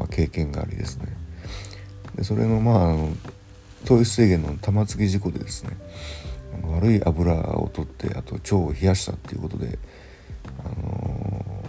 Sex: male